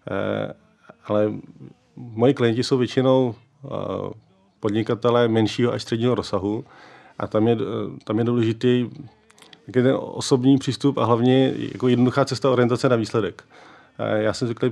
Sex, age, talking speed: male, 40-59, 120 wpm